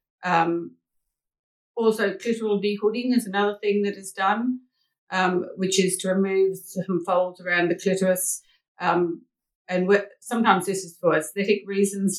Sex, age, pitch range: female, 50-69, 165-200 Hz